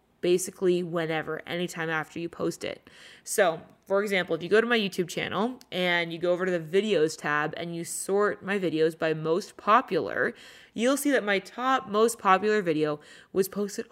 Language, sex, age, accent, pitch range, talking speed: English, female, 20-39, American, 165-200 Hz, 185 wpm